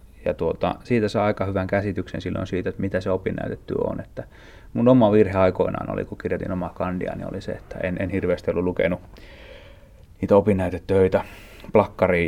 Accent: native